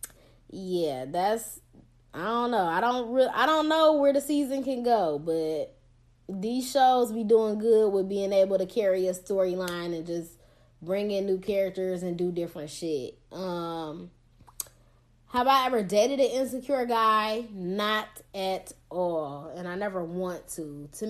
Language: English